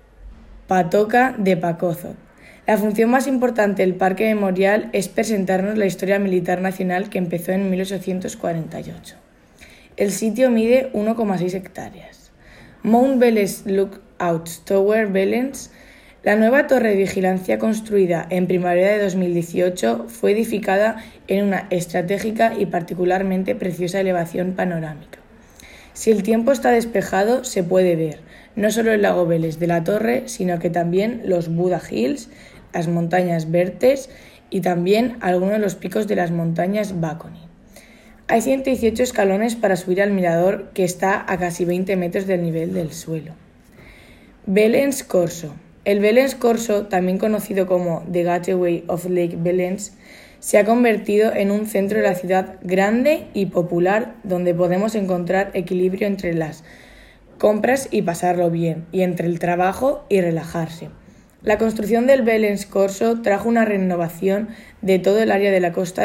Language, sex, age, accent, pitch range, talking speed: Czech, female, 20-39, Spanish, 180-215 Hz, 145 wpm